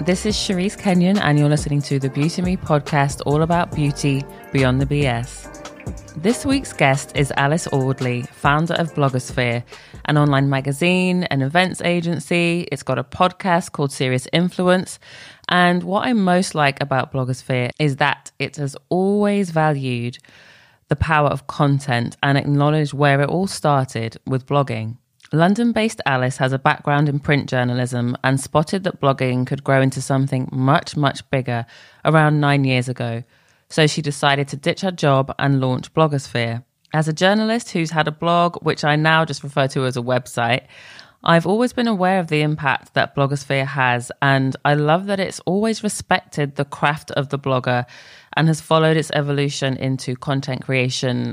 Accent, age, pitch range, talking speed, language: British, 20-39, 130-160 Hz, 170 wpm, English